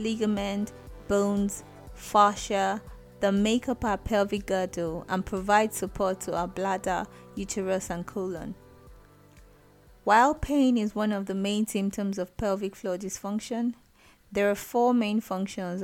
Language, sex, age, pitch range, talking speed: English, female, 20-39, 185-215 Hz, 135 wpm